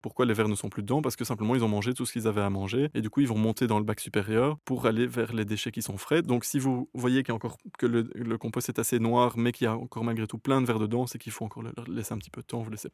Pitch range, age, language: 110-125 Hz, 20-39, French